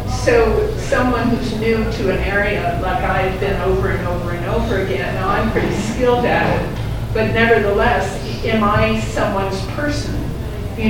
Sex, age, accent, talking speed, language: female, 50-69, American, 160 wpm, English